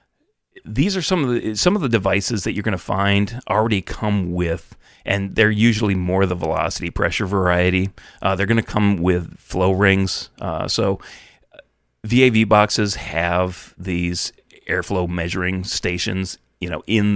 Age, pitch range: 30-49, 85-105 Hz